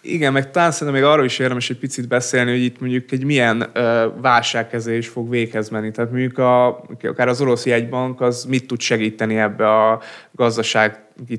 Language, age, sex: Hungarian, 20-39, male